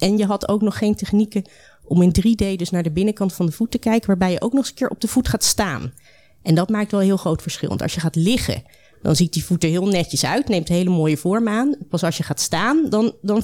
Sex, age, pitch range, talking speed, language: female, 30-49, 180-230 Hz, 290 wpm, Dutch